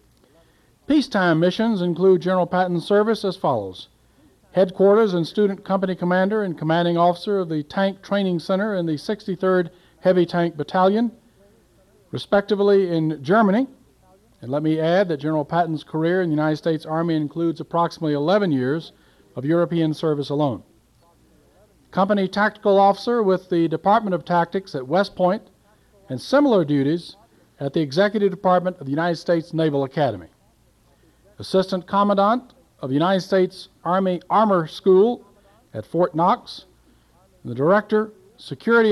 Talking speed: 140 wpm